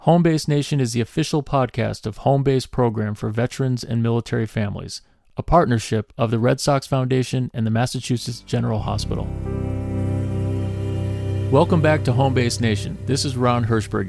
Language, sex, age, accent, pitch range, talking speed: English, male, 30-49, American, 105-125 Hz, 150 wpm